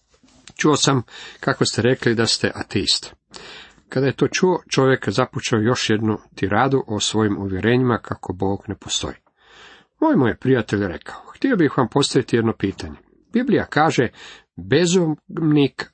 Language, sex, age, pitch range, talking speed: Croatian, male, 50-69, 110-145 Hz, 140 wpm